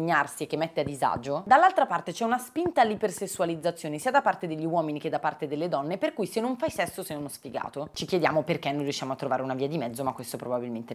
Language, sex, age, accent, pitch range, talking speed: Italian, female, 30-49, native, 145-185 Hz, 240 wpm